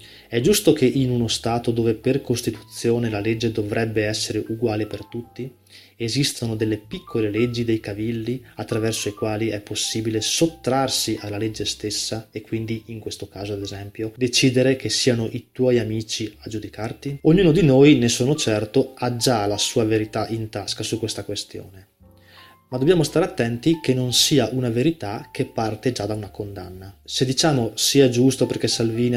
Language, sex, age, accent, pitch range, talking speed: Italian, male, 20-39, native, 105-130 Hz, 170 wpm